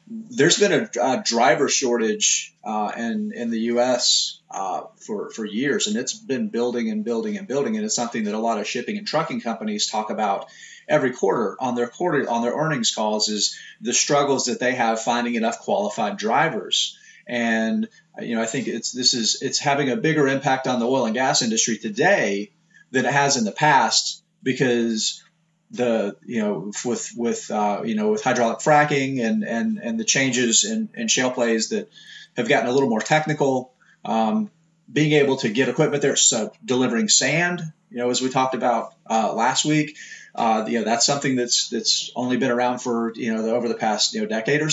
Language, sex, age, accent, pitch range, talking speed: English, male, 30-49, American, 120-175 Hz, 200 wpm